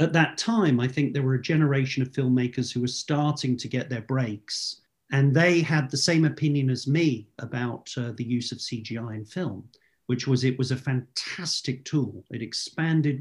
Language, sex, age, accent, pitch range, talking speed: English, male, 50-69, British, 120-145 Hz, 195 wpm